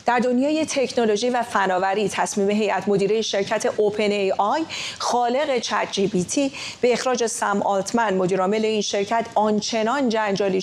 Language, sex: English, female